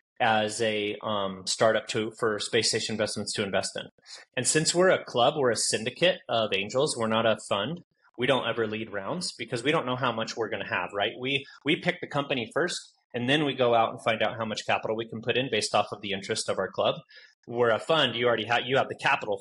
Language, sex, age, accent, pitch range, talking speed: English, male, 30-49, American, 110-130 Hz, 250 wpm